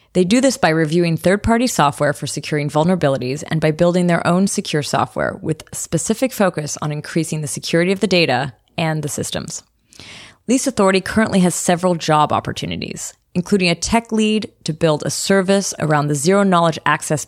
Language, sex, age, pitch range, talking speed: English, female, 20-39, 150-190 Hz, 170 wpm